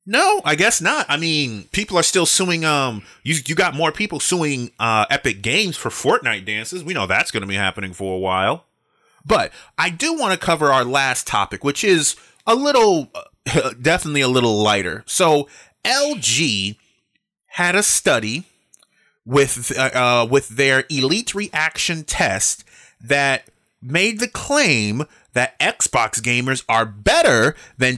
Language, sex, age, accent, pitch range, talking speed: English, male, 30-49, American, 110-165 Hz, 155 wpm